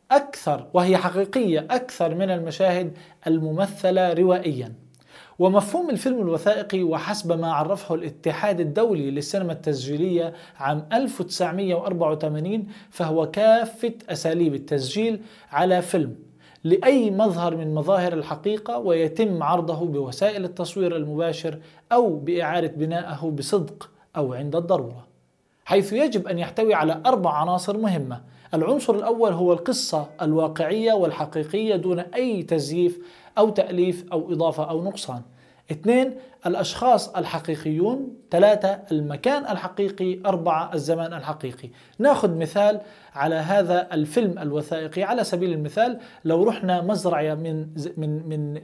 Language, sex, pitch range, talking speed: Arabic, male, 160-205 Hz, 110 wpm